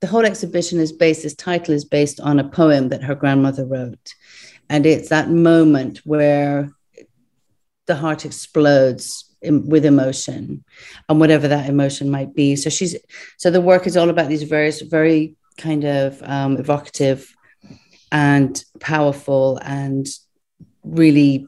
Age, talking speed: 40-59, 145 wpm